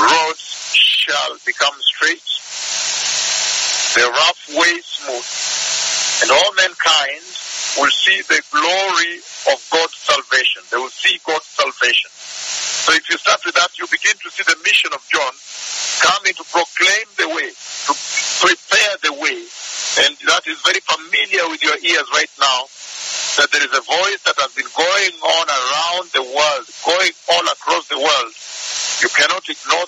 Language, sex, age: English, male, 50-69